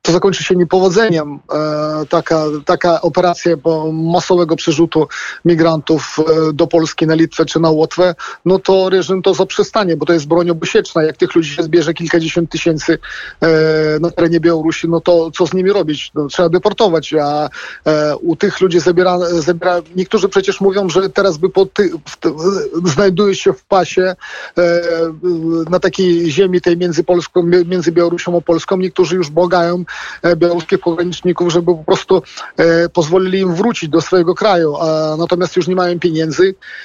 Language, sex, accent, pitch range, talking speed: Polish, male, native, 165-190 Hz, 165 wpm